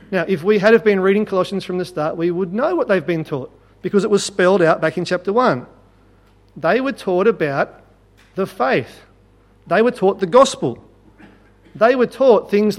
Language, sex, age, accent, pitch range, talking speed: English, male, 40-59, Australian, 150-205 Hz, 195 wpm